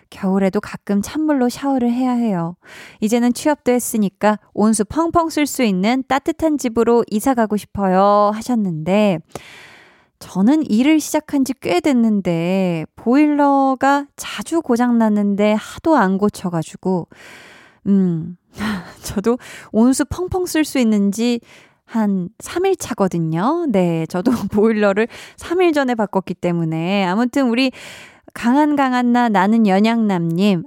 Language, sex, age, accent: Korean, female, 20-39, native